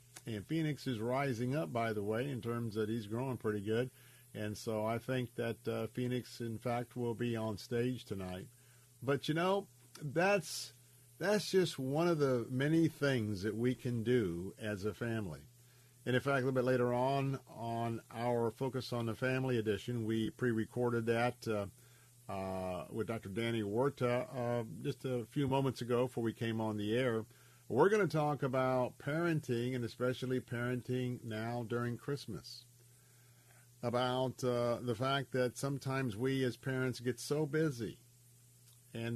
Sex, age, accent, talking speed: male, 50-69, American, 165 wpm